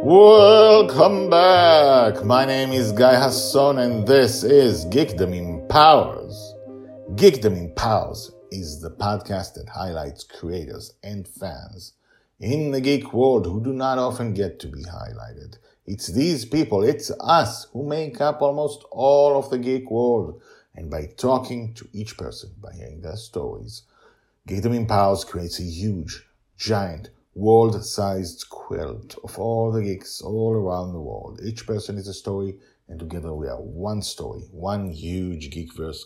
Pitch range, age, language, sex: 90-130 Hz, 50-69, English, male